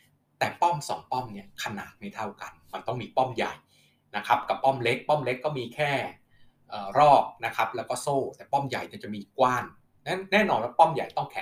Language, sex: Thai, male